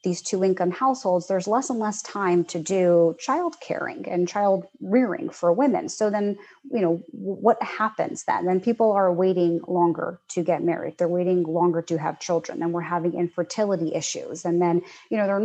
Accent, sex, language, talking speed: American, female, English, 190 wpm